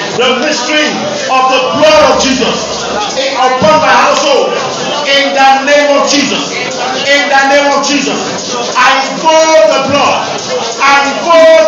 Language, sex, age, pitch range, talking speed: English, male, 50-69, 205-285 Hz, 135 wpm